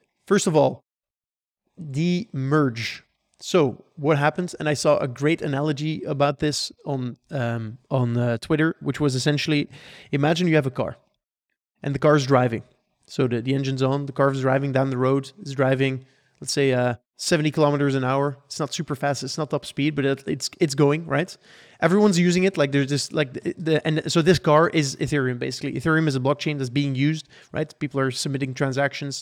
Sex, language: male, English